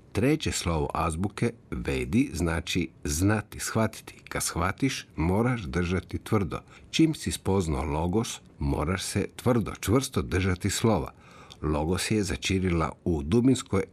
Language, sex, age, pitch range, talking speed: Croatian, male, 50-69, 80-105 Hz, 115 wpm